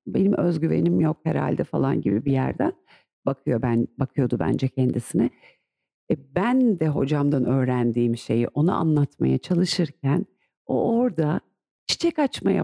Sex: female